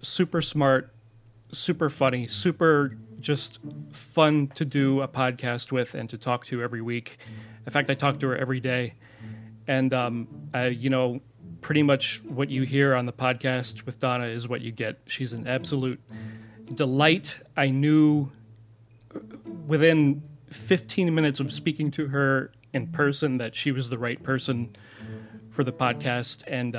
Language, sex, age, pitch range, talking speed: English, male, 30-49, 120-150 Hz, 155 wpm